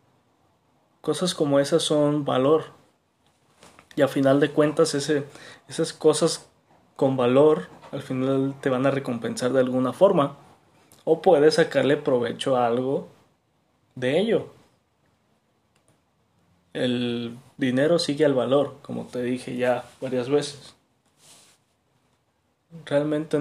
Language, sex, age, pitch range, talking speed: Spanish, male, 20-39, 125-150 Hz, 110 wpm